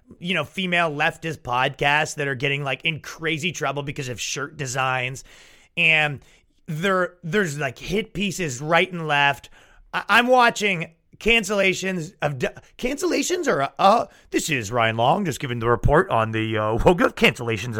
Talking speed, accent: 160 wpm, American